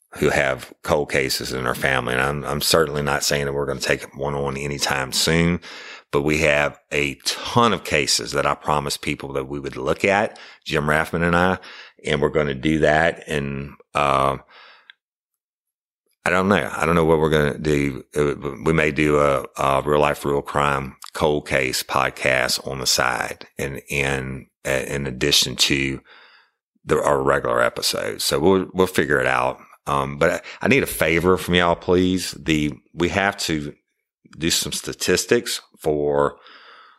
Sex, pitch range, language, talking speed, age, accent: male, 70-85 Hz, English, 175 wpm, 50-69, American